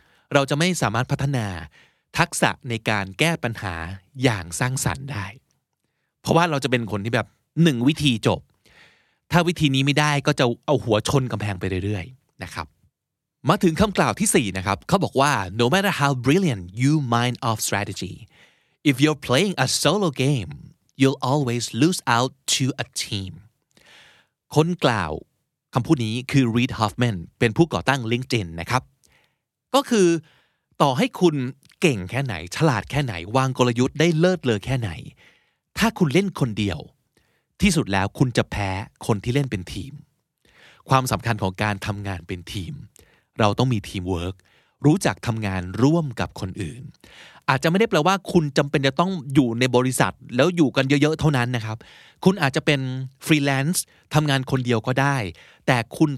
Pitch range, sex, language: 110-150 Hz, male, Thai